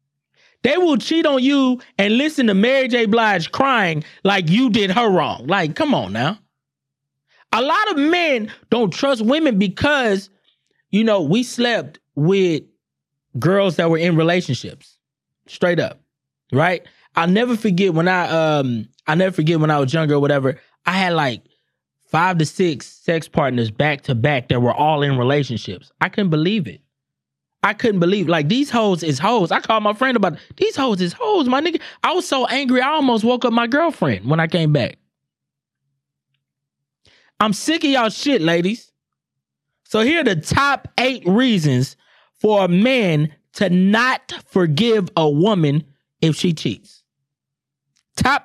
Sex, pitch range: male, 145-230 Hz